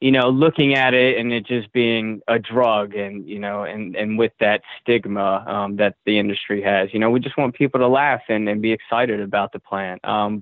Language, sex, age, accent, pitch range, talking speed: English, male, 20-39, American, 105-125 Hz, 230 wpm